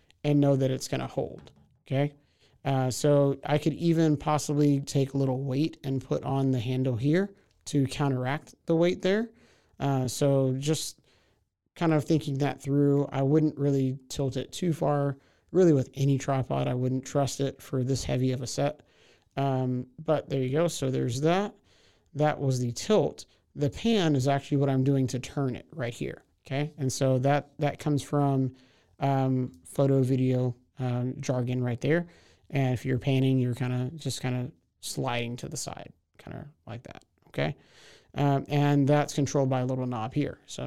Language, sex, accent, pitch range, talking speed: English, male, American, 130-150 Hz, 185 wpm